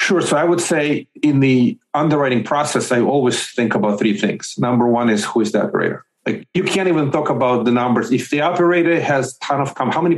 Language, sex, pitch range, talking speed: English, male, 115-140 Hz, 230 wpm